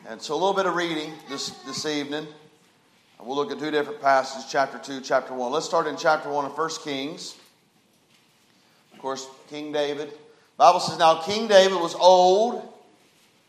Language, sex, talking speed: English, male, 180 wpm